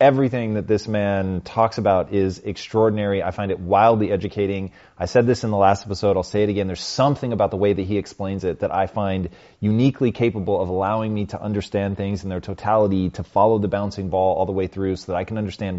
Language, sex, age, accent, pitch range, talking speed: Hindi, male, 30-49, American, 95-115 Hz, 230 wpm